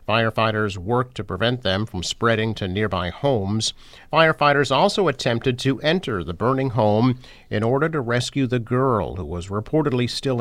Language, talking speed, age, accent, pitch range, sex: English, 160 wpm, 50-69, American, 100-125 Hz, male